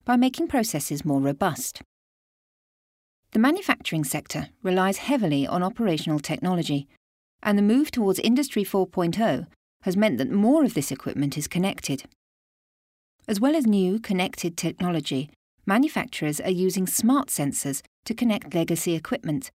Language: English